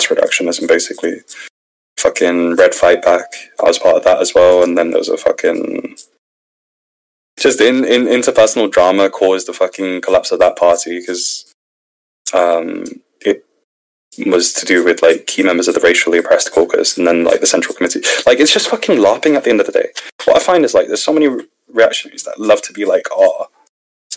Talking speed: 200 wpm